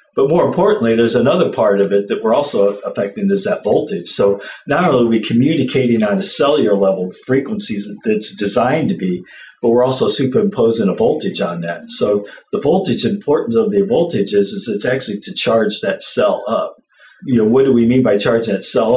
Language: English